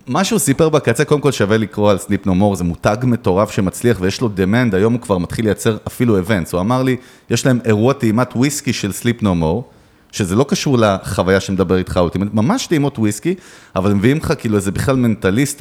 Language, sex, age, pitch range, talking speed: Hebrew, male, 30-49, 100-135 Hz, 215 wpm